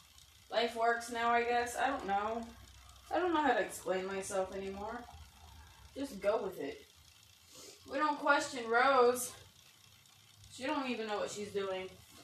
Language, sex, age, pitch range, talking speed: English, female, 10-29, 155-245 Hz, 150 wpm